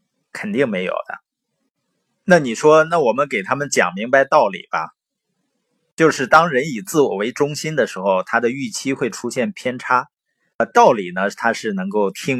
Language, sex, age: Chinese, male, 20-39